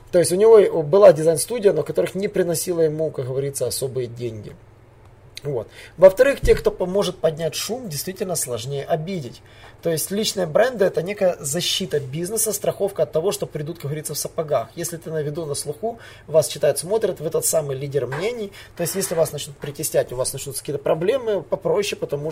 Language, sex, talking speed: Russian, male, 190 wpm